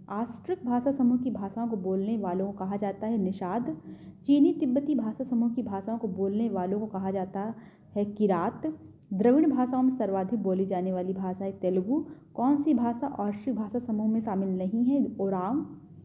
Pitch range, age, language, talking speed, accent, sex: 195-255 Hz, 30-49, Hindi, 180 wpm, native, female